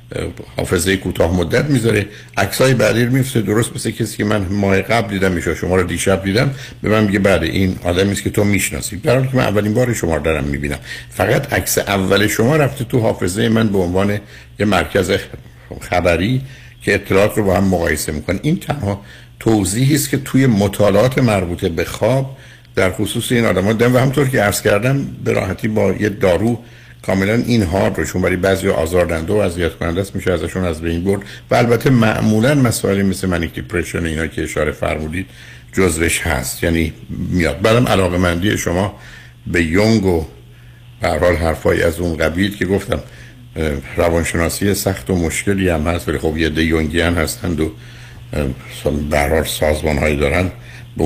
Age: 60-79